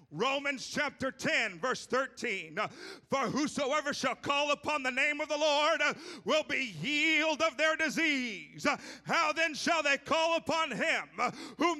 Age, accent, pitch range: 40-59, American, 250-350 Hz